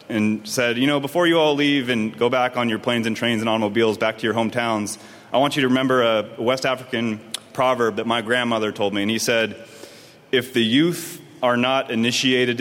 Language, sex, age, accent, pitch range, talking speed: English, male, 30-49, American, 110-130 Hz, 215 wpm